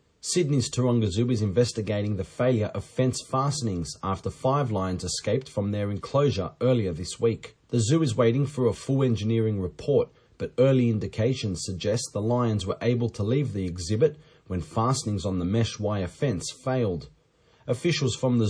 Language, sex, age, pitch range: English, male, 30-49, 100-125 Hz